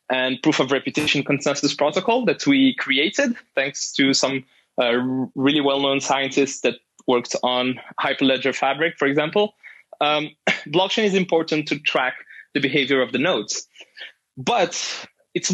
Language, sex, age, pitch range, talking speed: English, male, 20-39, 140-195 Hz, 140 wpm